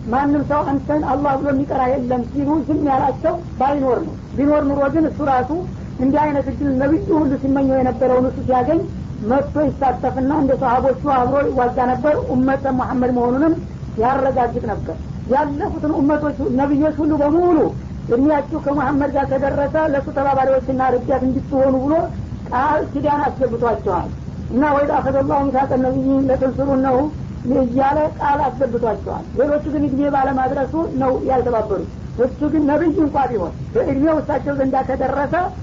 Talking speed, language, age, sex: 135 wpm, Amharic, 50-69, female